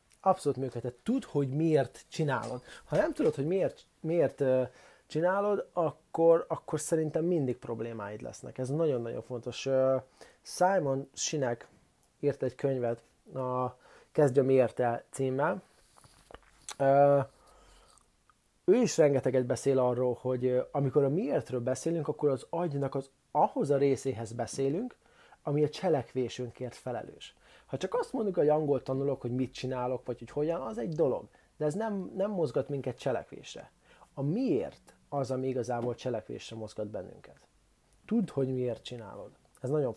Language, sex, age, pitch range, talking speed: Hungarian, male, 30-49, 125-145 Hz, 135 wpm